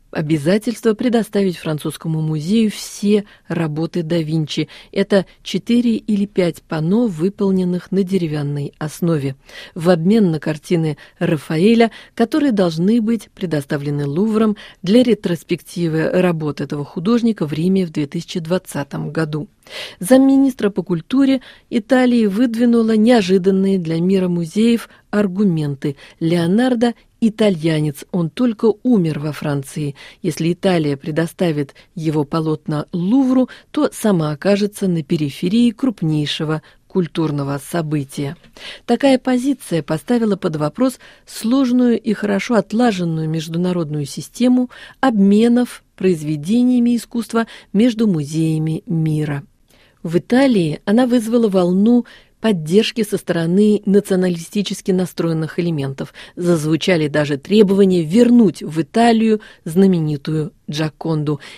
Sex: female